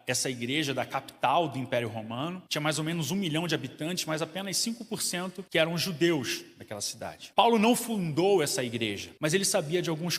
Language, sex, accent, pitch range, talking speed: Portuguese, male, Brazilian, 125-175 Hz, 195 wpm